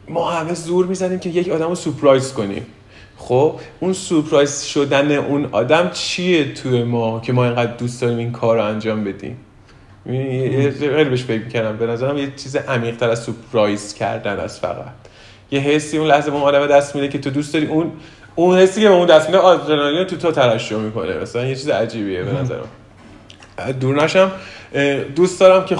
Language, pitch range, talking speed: Persian, 115-155 Hz, 185 wpm